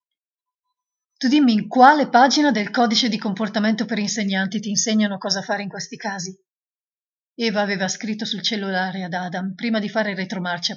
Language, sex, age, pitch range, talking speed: Italian, female, 30-49, 195-235 Hz, 160 wpm